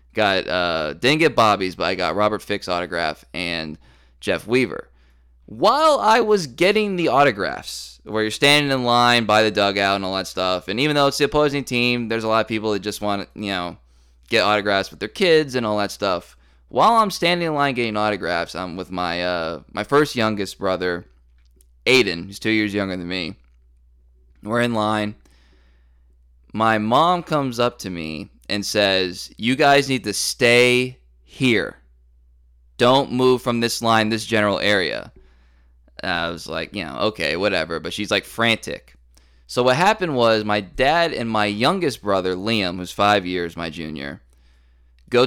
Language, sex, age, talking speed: English, male, 20-39, 175 wpm